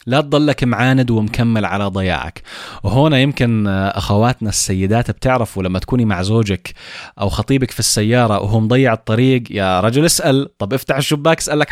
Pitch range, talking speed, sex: 100-135 Hz, 150 wpm, male